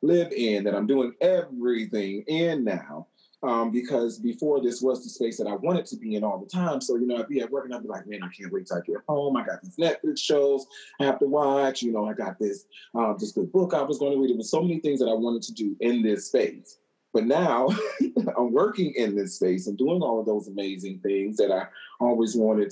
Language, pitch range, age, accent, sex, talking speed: English, 105-145 Hz, 30-49, American, male, 255 wpm